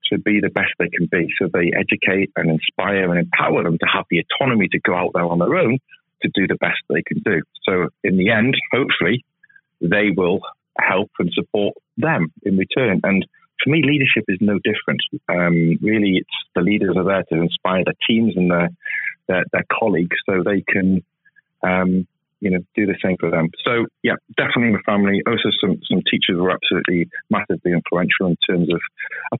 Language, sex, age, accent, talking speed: English, male, 30-49, British, 195 wpm